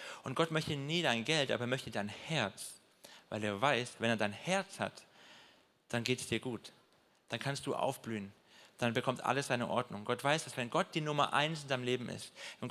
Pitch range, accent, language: 120-155 Hz, German, German